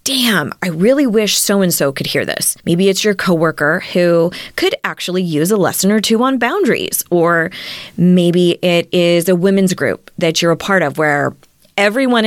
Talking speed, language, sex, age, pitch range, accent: 175 wpm, English, female, 20-39, 165-200 Hz, American